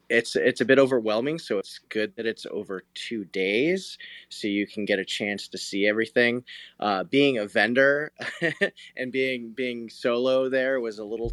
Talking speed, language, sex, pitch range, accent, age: 180 wpm, English, male, 100-120 Hz, American, 20-39